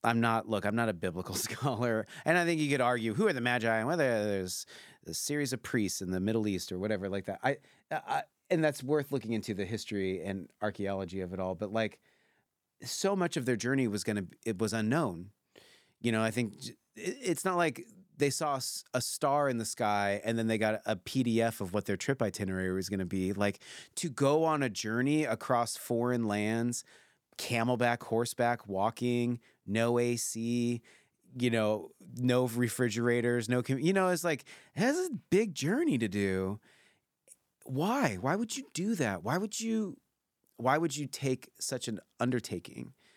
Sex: male